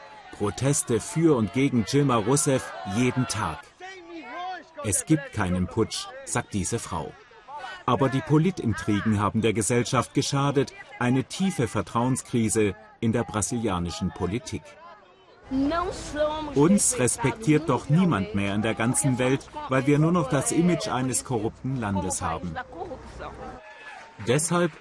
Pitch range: 100-135 Hz